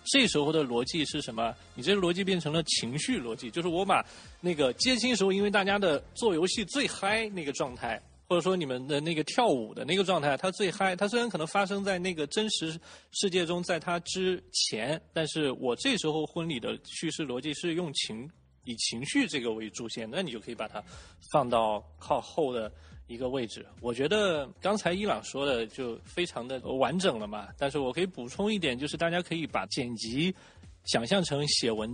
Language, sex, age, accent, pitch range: Chinese, male, 20-39, native, 125-185 Hz